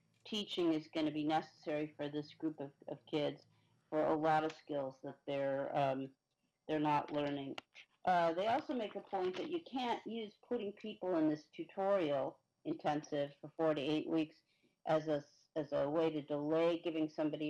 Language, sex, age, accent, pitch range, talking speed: English, female, 50-69, American, 150-185 Hz, 180 wpm